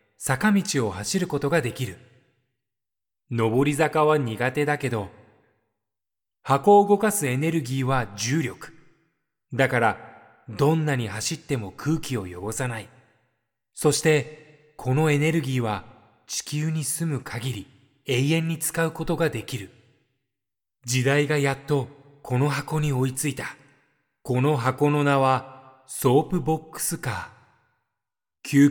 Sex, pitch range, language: male, 115-155 Hz, Japanese